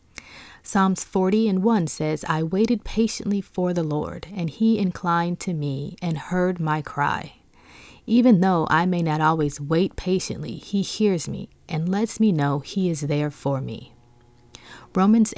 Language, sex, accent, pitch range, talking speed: English, female, American, 155-195 Hz, 160 wpm